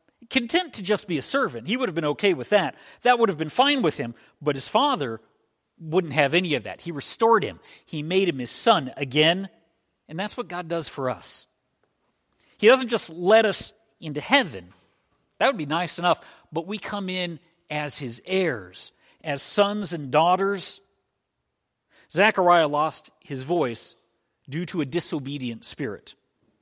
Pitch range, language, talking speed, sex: 145-190 Hz, English, 170 wpm, male